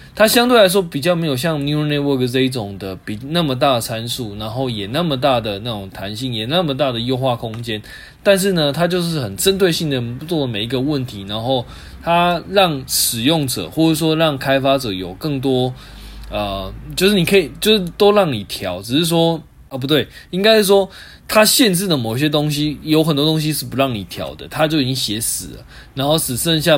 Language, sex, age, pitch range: Chinese, male, 20-39, 115-160 Hz